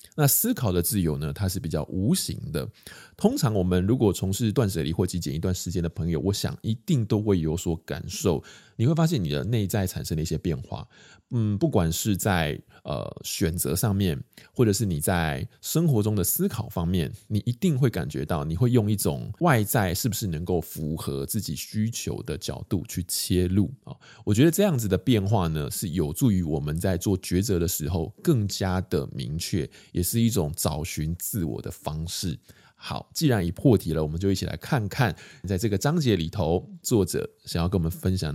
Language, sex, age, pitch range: Chinese, male, 20-39, 90-130 Hz